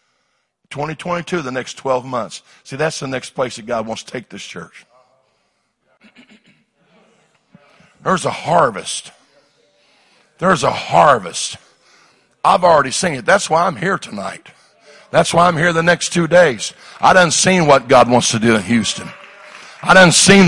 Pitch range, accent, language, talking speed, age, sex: 150-205 Hz, American, English, 155 wpm, 60-79, male